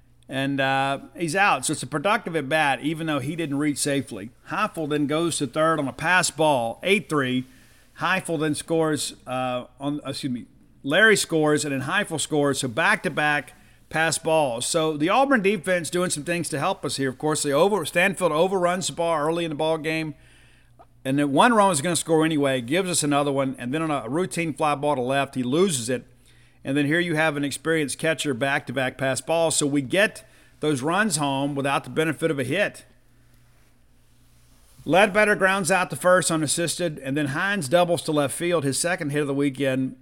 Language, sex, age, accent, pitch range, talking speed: English, male, 50-69, American, 135-165 Hz, 200 wpm